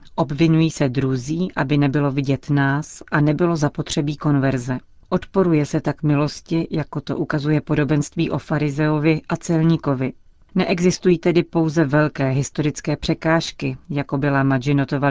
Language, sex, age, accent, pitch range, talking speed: Czech, female, 40-59, native, 140-160 Hz, 125 wpm